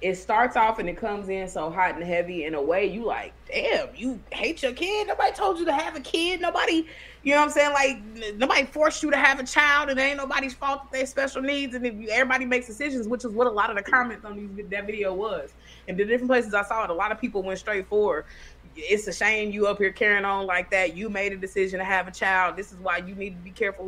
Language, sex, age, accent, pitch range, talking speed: English, female, 20-39, American, 190-260 Hz, 280 wpm